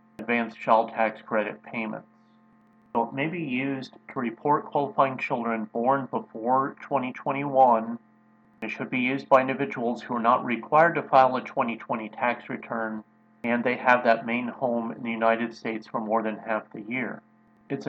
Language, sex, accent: English, male, American